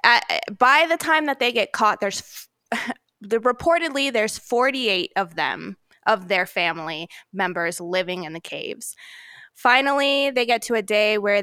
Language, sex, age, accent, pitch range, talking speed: English, female, 20-39, American, 195-240 Hz, 165 wpm